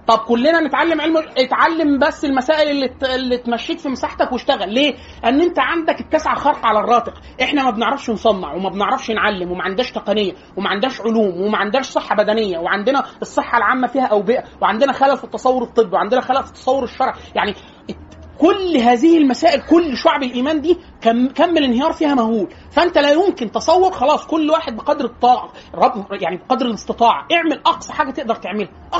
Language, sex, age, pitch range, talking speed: Arabic, male, 30-49, 230-310 Hz, 175 wpm